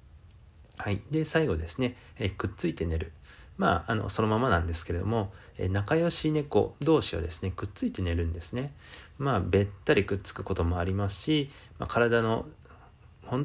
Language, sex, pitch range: Japanese, male, 85-115 Hz